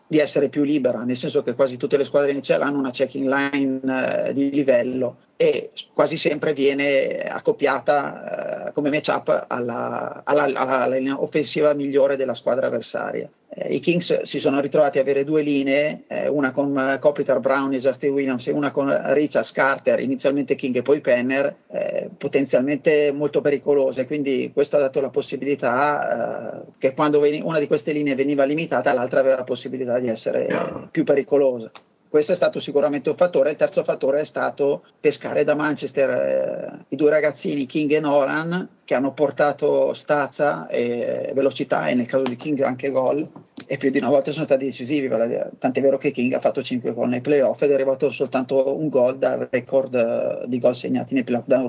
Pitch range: 130-150 Hz